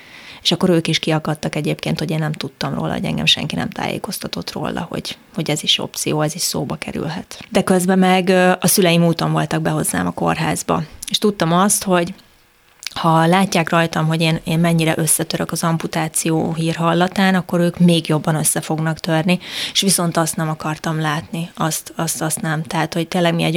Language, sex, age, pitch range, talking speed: Hungarian, female, 20-39, 160-180 Hz, 185 wpm